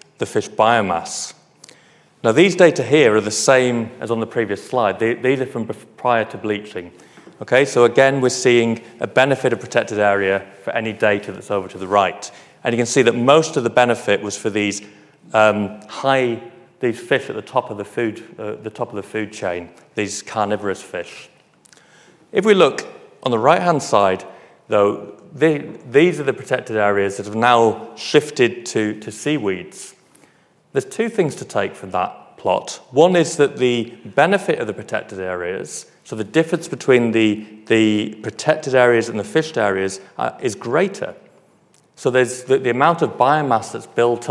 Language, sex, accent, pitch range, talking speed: English, male, British, 105-125 Hz, 180 wpm